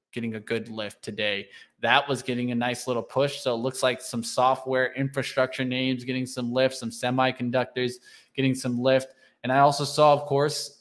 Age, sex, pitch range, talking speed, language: 20-39, male, 125-140 Hz, 190 wpm, English